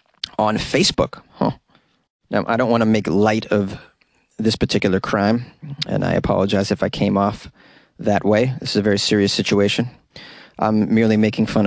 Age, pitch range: 30-49, 105-120 Hz